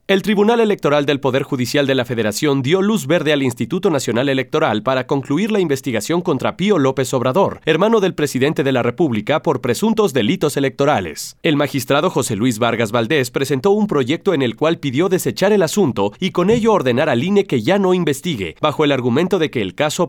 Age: 40-59